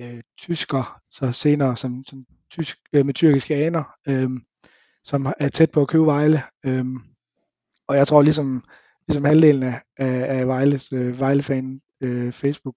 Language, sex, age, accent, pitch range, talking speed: Danish, male, 20-39, native, 130-155 Hz, 140 wpm